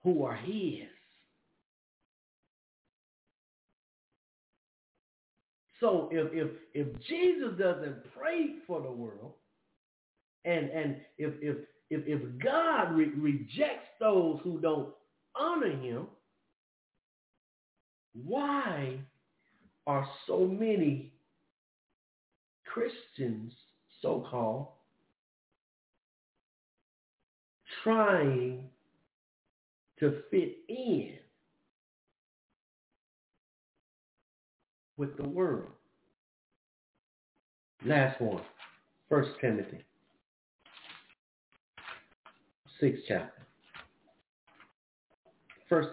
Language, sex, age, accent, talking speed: English, male, 50-69, American, 65 wpm